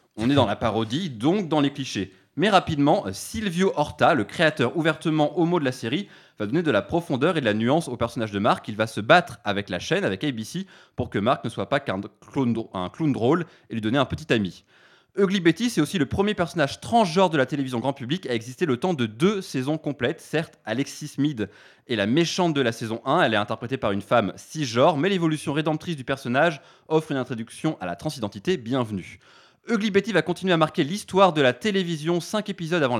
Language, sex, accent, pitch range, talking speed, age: French, male, French, 120-175 Hz, 220 wpm, 20-39